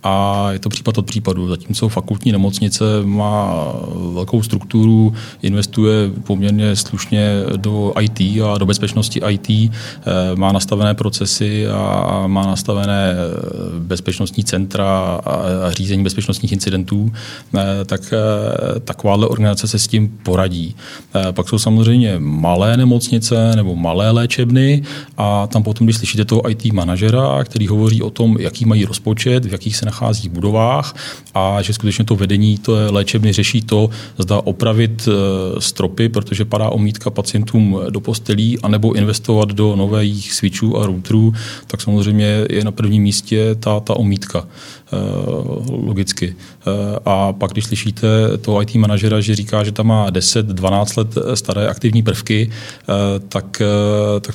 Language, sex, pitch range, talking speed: Czech, male, 100-110 Hz, 135 wpm